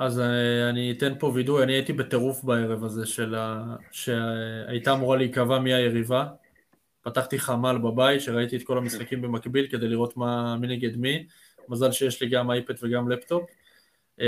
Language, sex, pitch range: Hebrew, male, 120-140 Hz